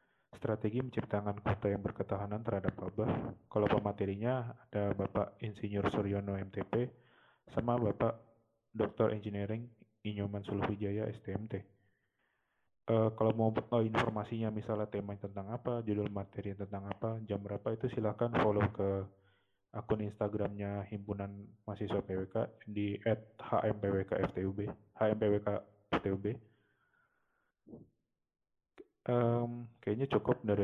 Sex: male